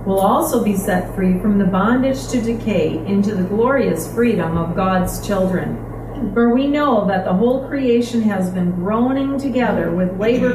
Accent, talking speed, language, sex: American, 170 wpm, English, female